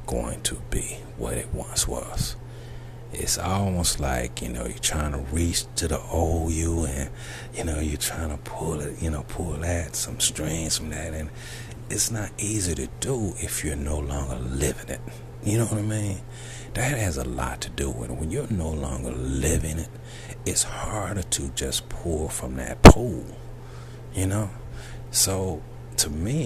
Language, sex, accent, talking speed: English, male, American, 180 wpm